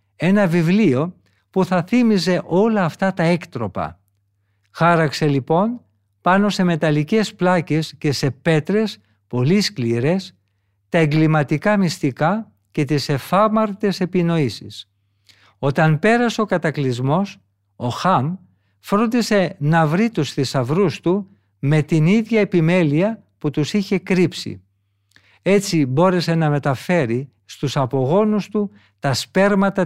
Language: Greek